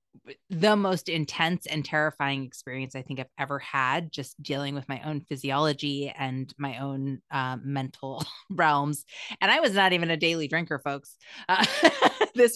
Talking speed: 160 wpm